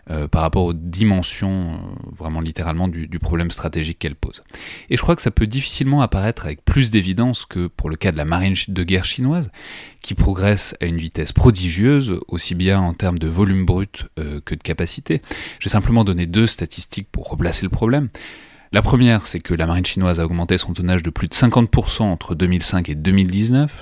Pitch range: 85-110 Hz